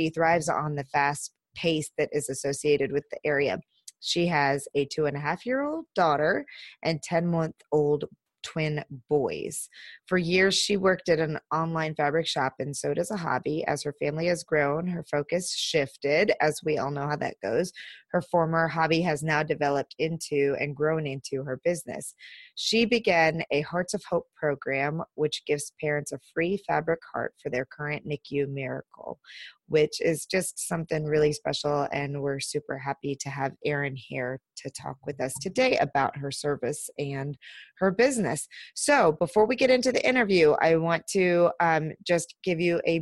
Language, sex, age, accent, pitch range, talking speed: English, female, 20-39, American, 145-175 Hz, 175 wpm